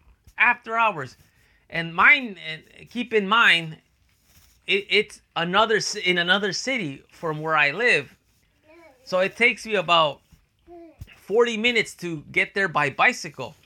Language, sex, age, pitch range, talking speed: English, male, 30-49, 140-210 Hz, 130 wpm